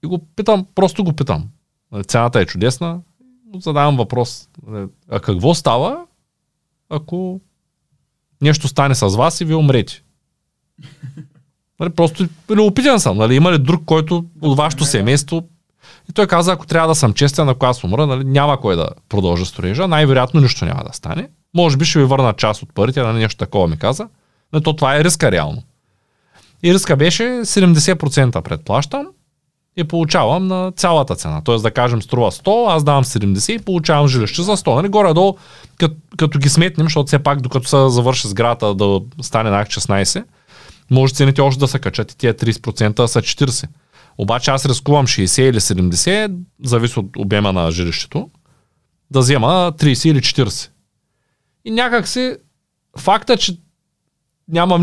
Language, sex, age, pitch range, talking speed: Bulgarian, male, 30-49, 120-170 Hz, 155 wpm